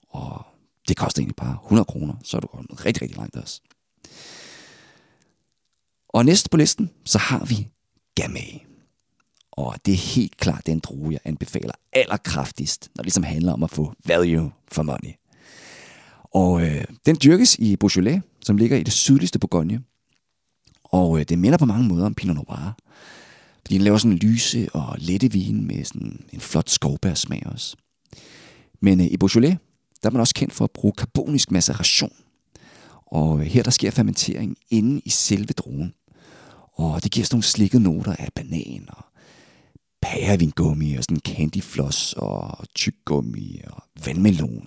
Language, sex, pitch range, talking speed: Danish, male, 85-125 Hz, 170 wpm